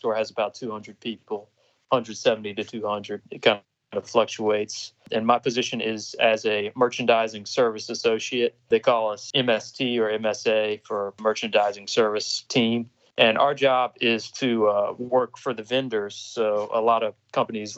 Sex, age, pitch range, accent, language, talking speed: male, 20-39, 110-125 Hz, American, English, 150 wpm